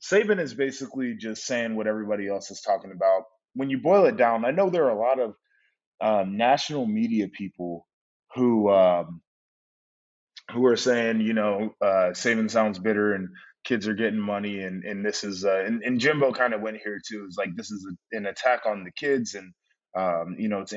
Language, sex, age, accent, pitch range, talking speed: English, male, 20-39, American, 100-130 Hz, 210 wpm